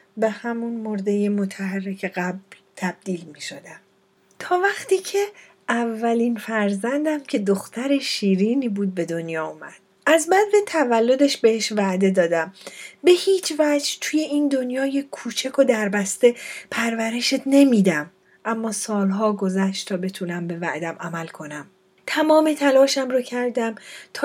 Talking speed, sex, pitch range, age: 125 wpm, female, 200-270 Hz, 40-59